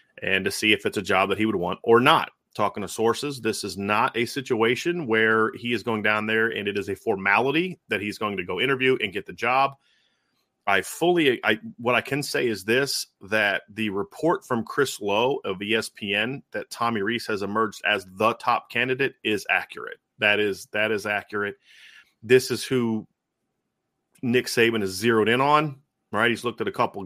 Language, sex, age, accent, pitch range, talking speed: English, male, 30-49, American, 105-120 Hz, 200 wpm